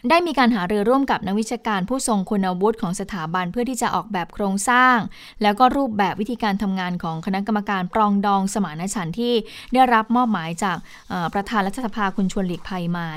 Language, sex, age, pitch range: Thai, female, 20-39, 185-235 Hz